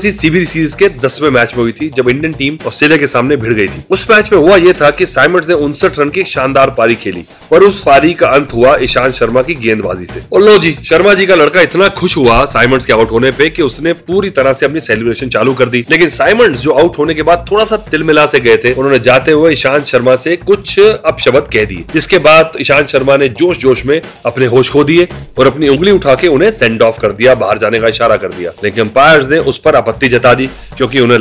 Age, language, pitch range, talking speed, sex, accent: 30-49, Hindi, 130-170 Hz, 210 wpm, male, native